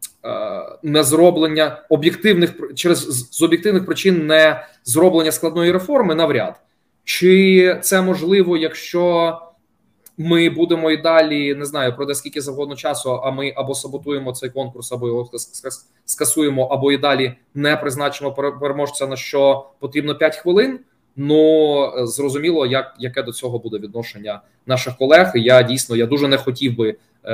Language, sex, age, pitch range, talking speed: Ukrainian, male, 20-39, 115-150 Hz, 140 wpm